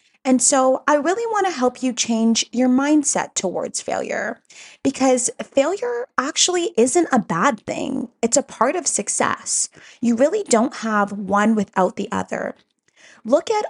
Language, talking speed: English, 155 wpm